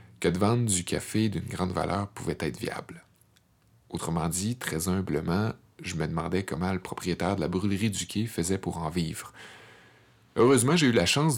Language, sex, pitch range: French, male, 90-110 Hz